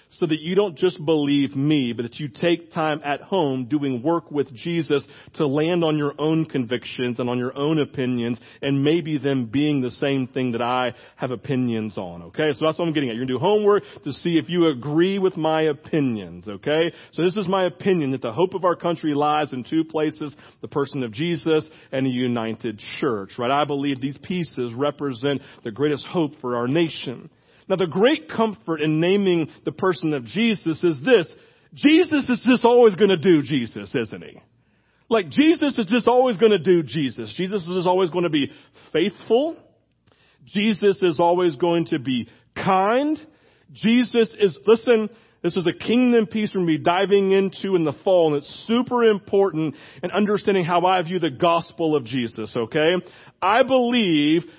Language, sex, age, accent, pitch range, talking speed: English, male, 40-59, American, 140-190 Hz, 190 wpm